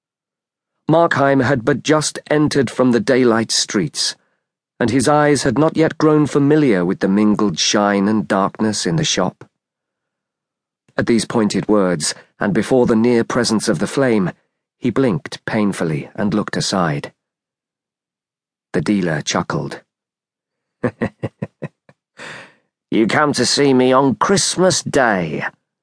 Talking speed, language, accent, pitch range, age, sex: 130 wpm, English, British, 105-140 Hz, 40-59, male